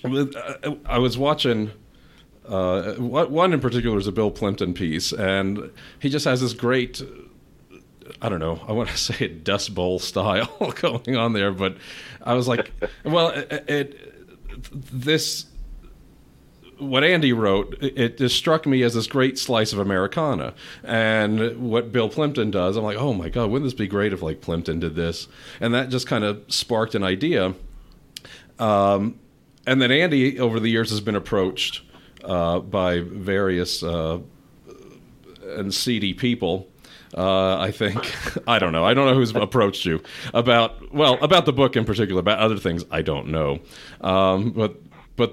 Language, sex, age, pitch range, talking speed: English, male, 40-59, 95-125 Hz, 165 wpm